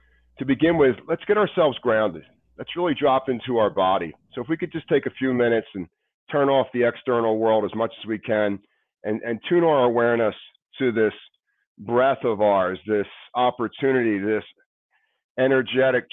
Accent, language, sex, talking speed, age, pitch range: American, English, male, 175 wpm, 40-59, 110-135 Hz